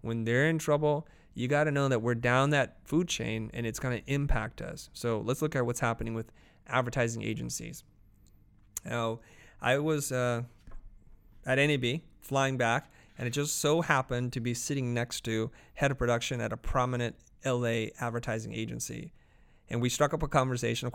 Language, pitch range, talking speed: English, 115-135 Hz, 180 wpm